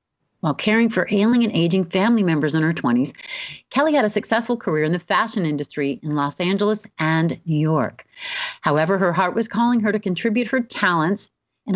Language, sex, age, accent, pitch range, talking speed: English, female, 40-59, American, 160-230 Hz, 190 wpm